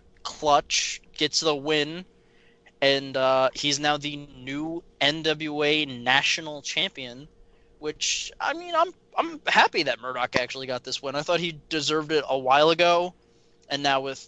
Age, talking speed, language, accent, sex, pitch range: 20-39, 150 wpm, English, American, male, 130-160 Hz